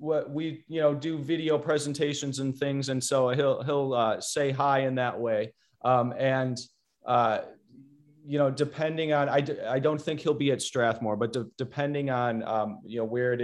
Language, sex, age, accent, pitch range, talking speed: English, male, 30-49, American, 125-150 Hz, 195 wpm